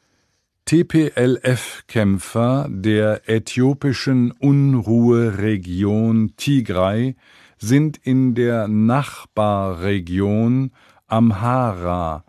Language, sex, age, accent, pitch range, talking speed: English, male, 50-69, German, 105-125 Hz, 50 wpm